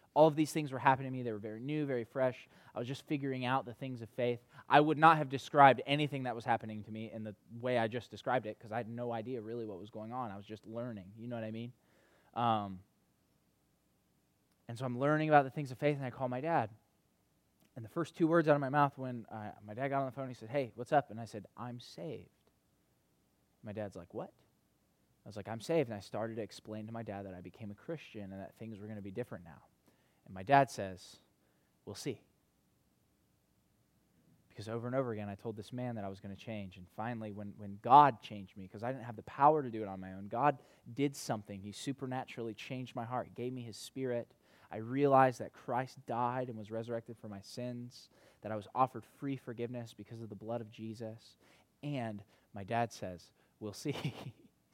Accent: American